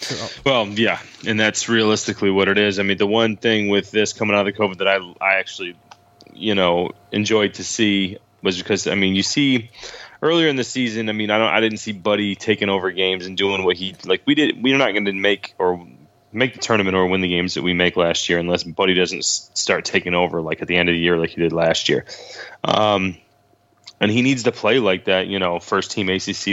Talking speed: 235 wpm